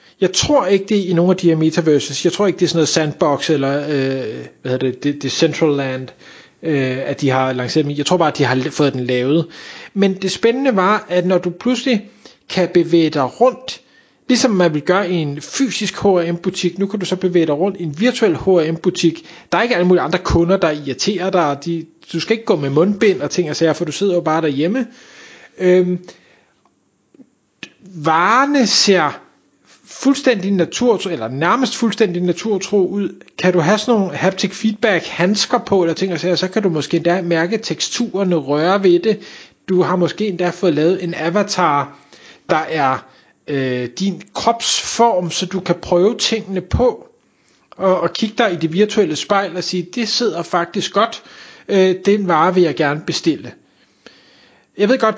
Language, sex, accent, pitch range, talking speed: Danish, male, native, 165-205 Hz, 190 wpm